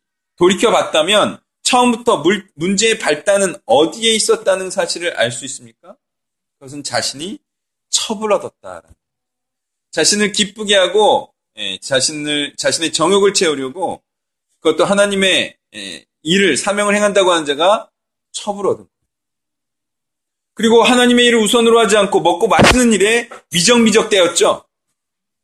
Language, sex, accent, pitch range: Korean, male, native, 150-225 Hz